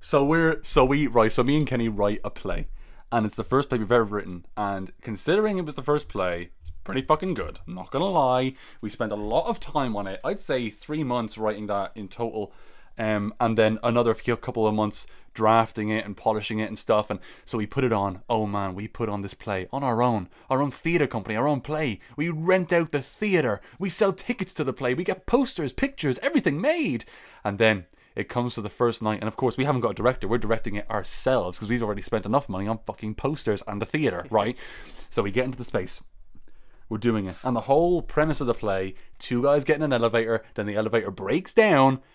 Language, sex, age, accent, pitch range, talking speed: English, male, 20-39, British, 105-140 Hz, 235 wpm